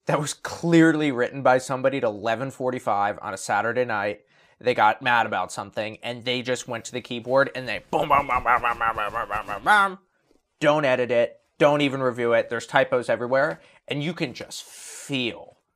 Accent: American